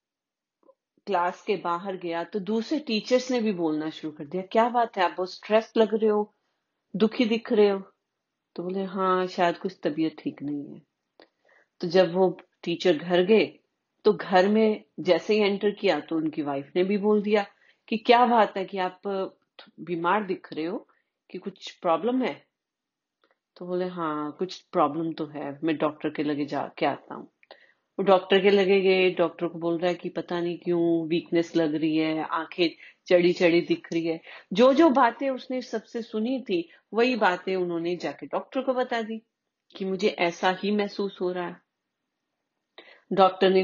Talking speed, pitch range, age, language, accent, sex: 180 wpm, 170-215 Hz, 40-59, Hindi, native, female